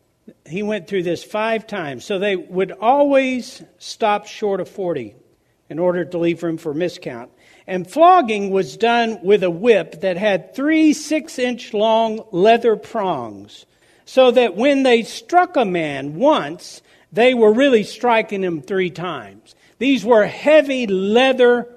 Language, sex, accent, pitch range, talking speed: English, male, American, 195-280 Hz, 150 wpm